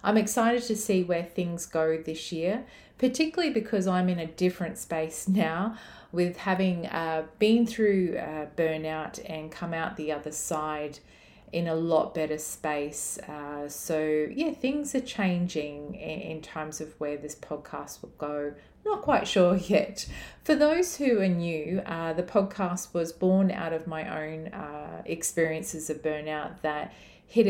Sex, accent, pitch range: female, Australian, 155-190 Hz